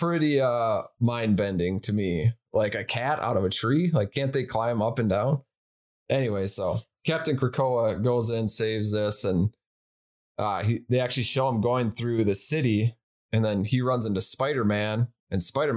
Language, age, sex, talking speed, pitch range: English, 20-39, male, 185 wpm, 100-120 Hz